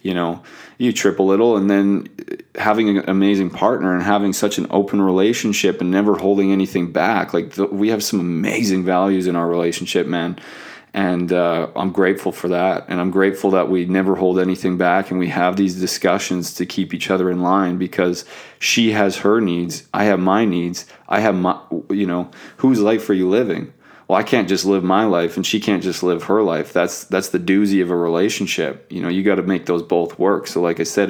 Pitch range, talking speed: 90-100 Hz, 215 wpm